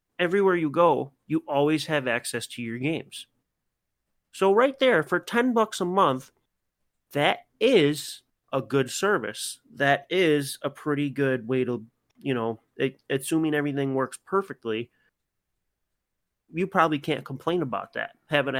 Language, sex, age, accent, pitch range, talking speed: English, male, 30-49, American, 120-160 Hz, 140 wpm